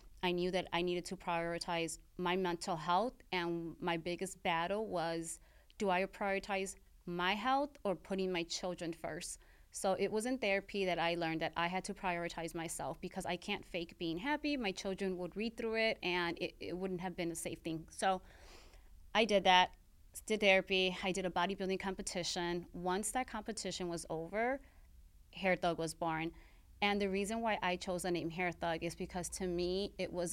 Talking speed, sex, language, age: 190 wpm, female, English, 30-49